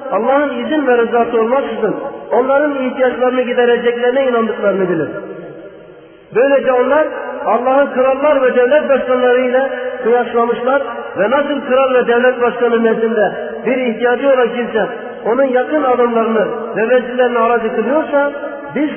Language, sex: Turkish, male